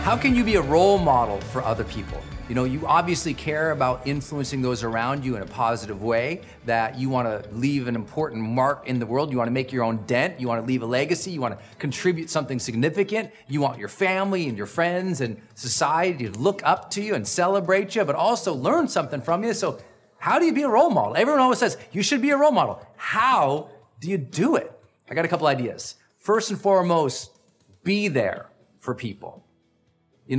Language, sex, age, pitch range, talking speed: English, male, 40-59, 125-185 Hz, 215 wpm